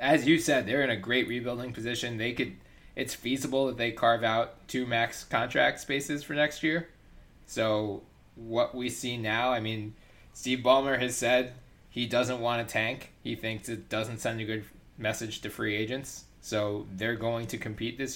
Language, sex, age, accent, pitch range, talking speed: English, male, 20-39, American, 105-125 Hz, 190 wpm